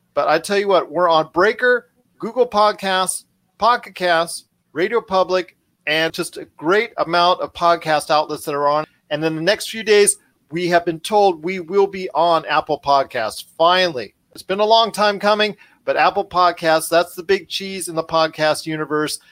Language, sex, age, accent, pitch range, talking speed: English, male, 40-59, American, 160-195 Hz, 185 wpm